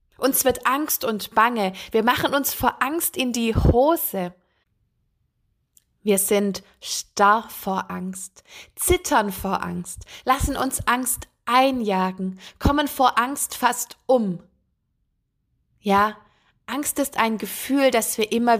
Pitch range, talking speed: 200-255 Hz, 125 wpm